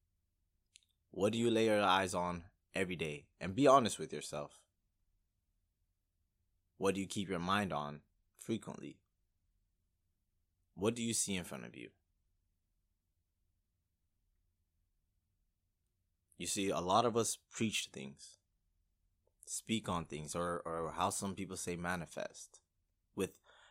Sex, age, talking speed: male, 20-39, 125 wpm